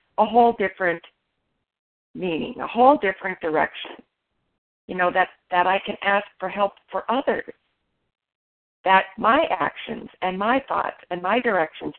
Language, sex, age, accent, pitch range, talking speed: English, female, 50-69, American, 180-235 Hz, 140 wpm